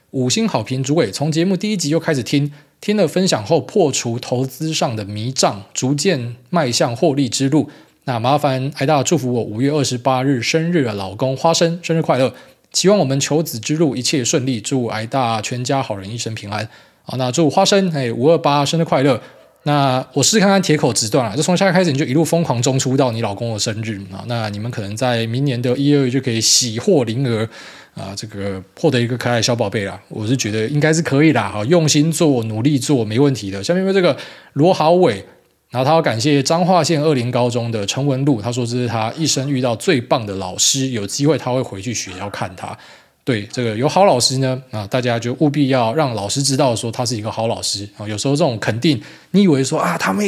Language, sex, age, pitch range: Chinese, male, 20-39, 115-155 Hz